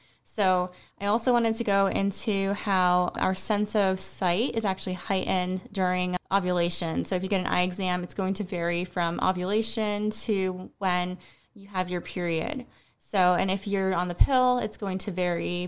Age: 20-39